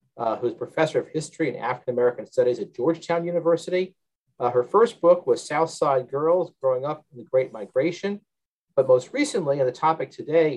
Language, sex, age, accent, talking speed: English, male, 50-69, American, 185 wpm